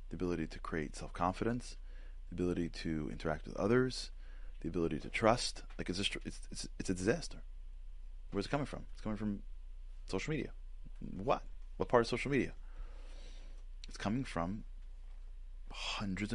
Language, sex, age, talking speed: English, male, 30-49, 140 wpm